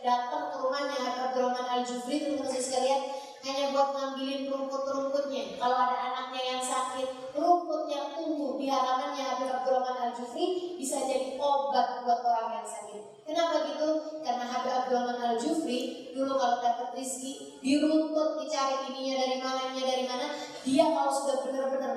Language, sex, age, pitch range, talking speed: Indonesian, female, 20-39, 245-275 Hz, 155 wpm